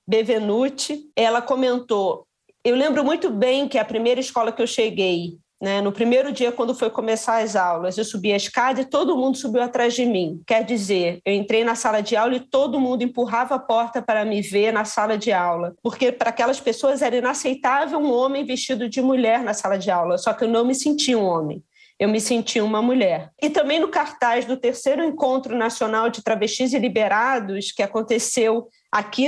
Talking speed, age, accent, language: 200 wpm, 40-59, Brazilian, Portuguese